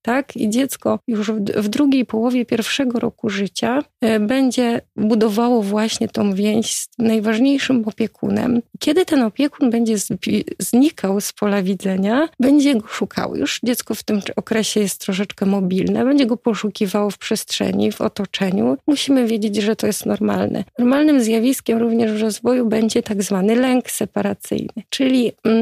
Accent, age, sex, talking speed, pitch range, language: native, 30-49, female, 140 wpm, 205-240 Hz, Polish